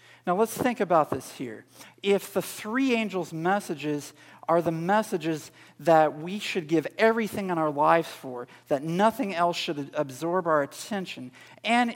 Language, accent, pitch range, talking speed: English, American, 150-195 Hz, 155 wpm